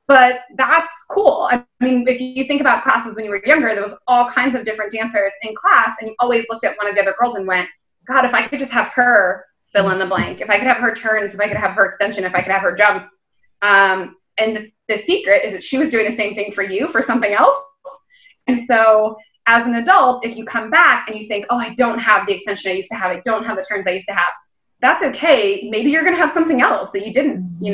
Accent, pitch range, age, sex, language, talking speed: American, 195-250 Hz, 20-39, female, English, 270 wpm